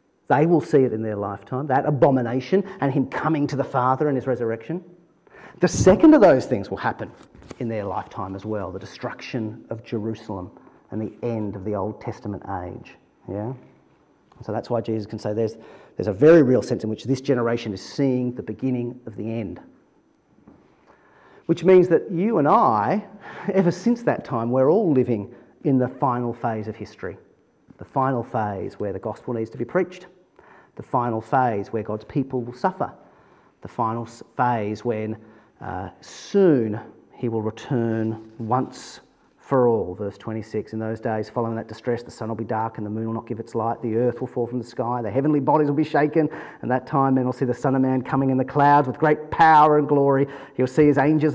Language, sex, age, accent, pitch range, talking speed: English, male, 40-59, Australian, 110-145 Hz, 200 wpm